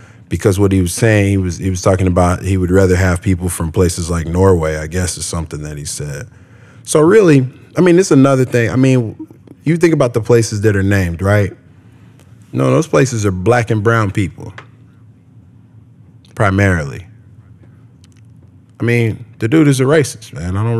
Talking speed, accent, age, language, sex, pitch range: 185 wpm, American, 20-39, English, male, 100-120 Hz